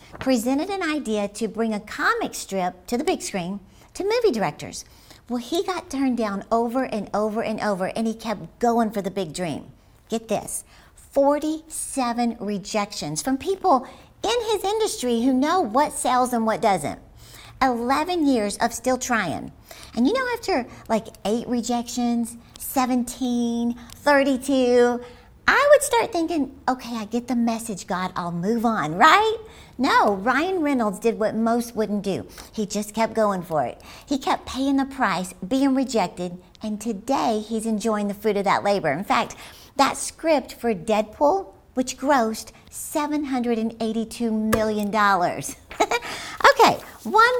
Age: 50-69